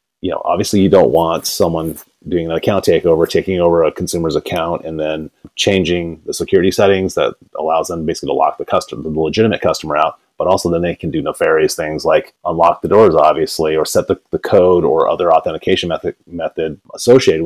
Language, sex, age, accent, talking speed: English, male, 30-49, American, 200 wpm